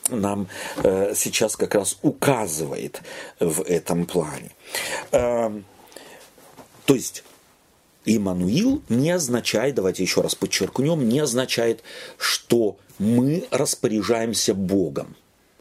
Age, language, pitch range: 40-59, Russian, 105-175 Hz